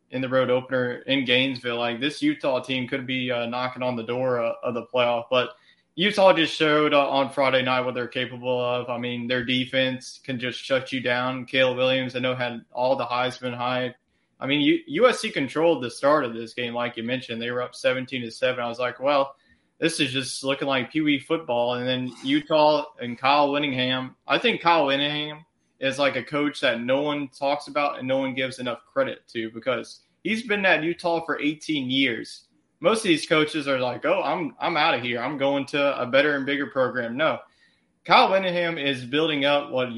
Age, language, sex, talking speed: 20-39, English, male, 210 wpm